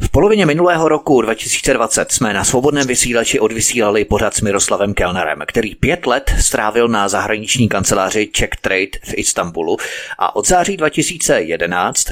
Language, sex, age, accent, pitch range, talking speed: Czech, male, 30-49, native, 100-135 Hz, 145 wpm